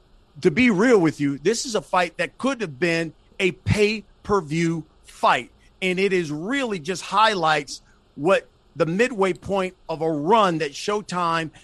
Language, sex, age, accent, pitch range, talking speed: English, male, 50-69, American, 160-200 Hz, 160 wpm